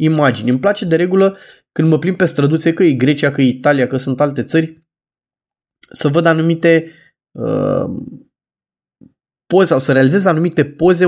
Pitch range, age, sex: 140-175 Hz, 20-39, male